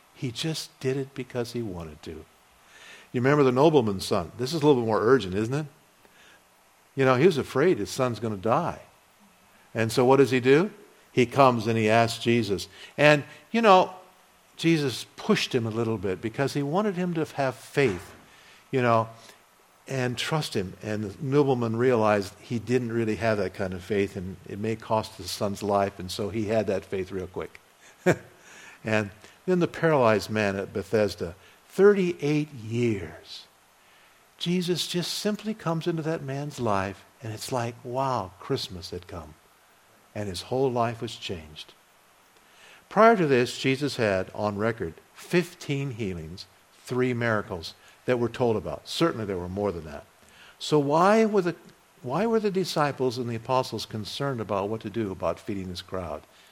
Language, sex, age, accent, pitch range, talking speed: English, male, 50-69, American, 105-145 Hz, 175 wpm